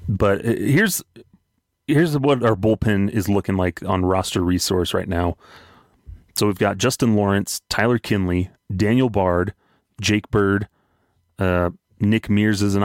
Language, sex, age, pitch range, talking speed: English, male, 30-49, 90-110 Hz, 140 wpm